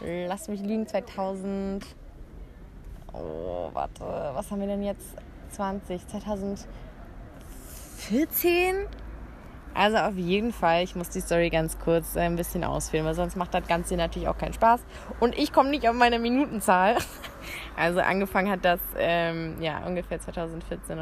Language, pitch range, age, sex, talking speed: Arabic, 165-205 Hz, 20-39, female, 145 wpm